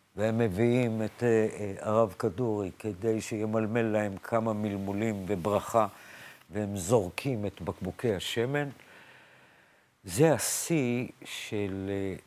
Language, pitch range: Hebrew, 105-145 Hz